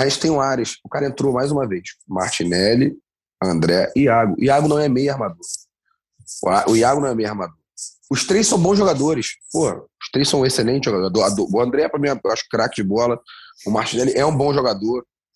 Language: Portuguese